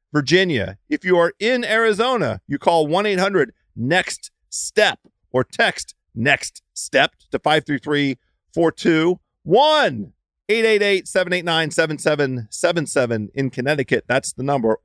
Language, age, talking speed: English, 40-59, 80 wpm